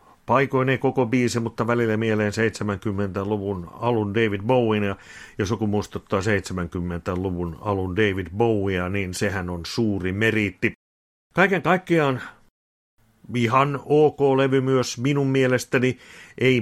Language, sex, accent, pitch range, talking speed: Finnish, male, native, 100-125 Hz, 110 wpm